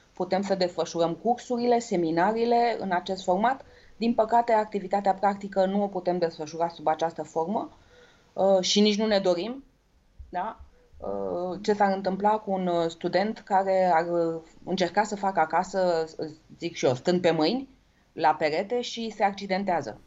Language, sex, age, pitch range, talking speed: English, female, 20-39, 160-205 Hz, 150 wpm